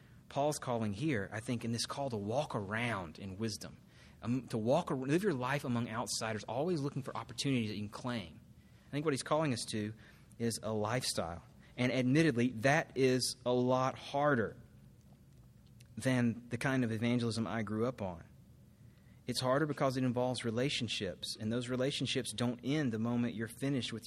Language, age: English, 30-49